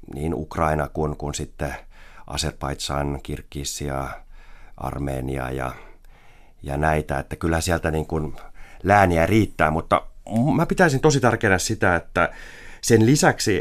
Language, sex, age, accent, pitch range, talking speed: Finnish, male, 30-49, native, 75-90 Hz, 120 wpm